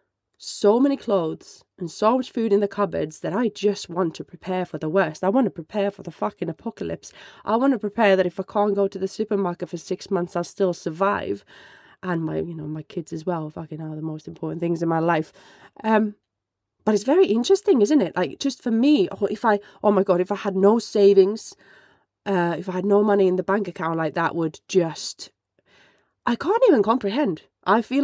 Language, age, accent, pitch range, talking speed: English, 20-39, British, 175-215 Hz, 225 wpm